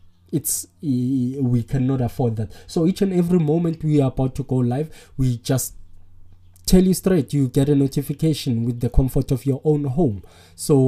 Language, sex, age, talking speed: English, male, 20-39, 180 wpm